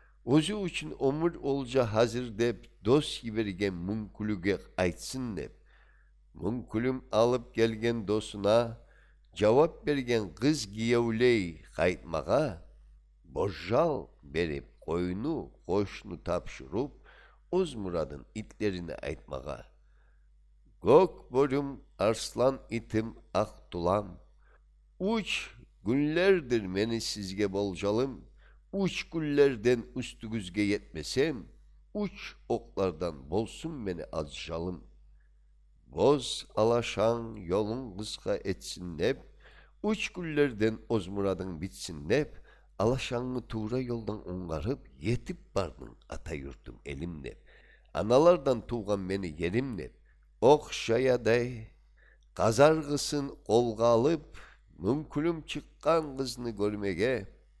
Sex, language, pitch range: male, Russian, 90-130 Hz